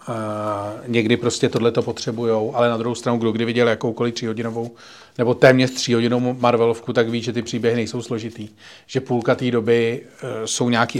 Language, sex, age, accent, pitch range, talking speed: Czech, male, 40-59, native, 115-135 Hz, 175 wpm